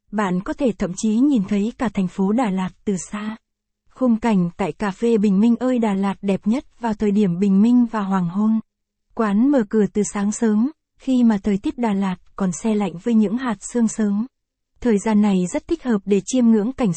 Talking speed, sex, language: 225 wpm, female, Vietnamese